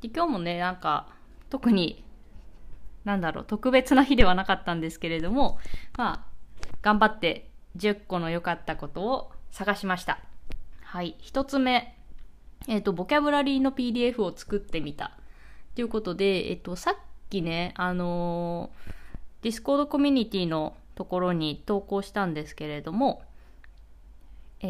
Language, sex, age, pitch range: Japanese, female, 20-39, 165-235 Hz